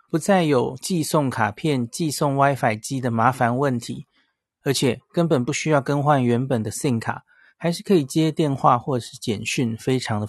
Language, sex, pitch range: Chinese, male, 120-155 Hz